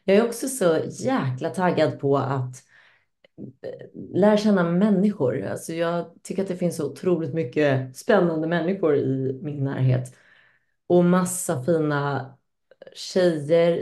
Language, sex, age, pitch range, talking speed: Swedish, female, 30-49, 140-185 Hz, 120 wpm